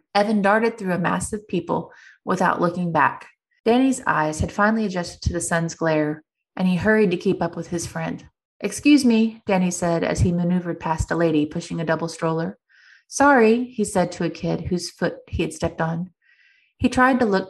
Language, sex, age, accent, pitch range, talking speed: English, female, 30-49, American, 165-215 Hz, 200 wpm